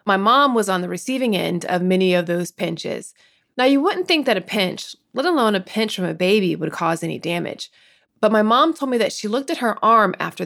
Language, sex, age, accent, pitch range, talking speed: English, female, 20-39, American, 190-250 Hz, 240 wpm